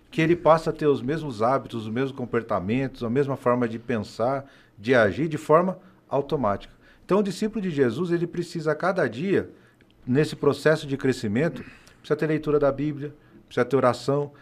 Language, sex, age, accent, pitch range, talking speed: Portuguese, male, 40-59, Brazilian, 130-170 Hz, 180 wpm